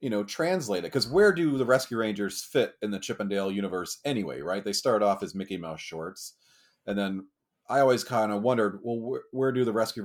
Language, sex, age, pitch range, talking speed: English, male, 30-49, 90-115 Hz, 220 wpm